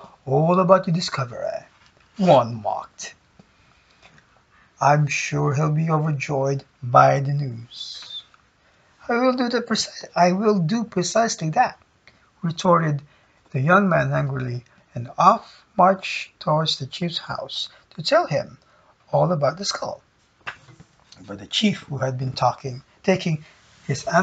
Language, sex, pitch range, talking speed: English, male, 145-185 Hz, 125 wpm